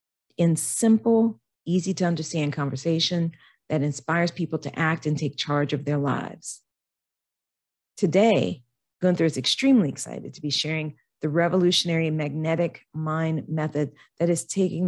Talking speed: 125 wpm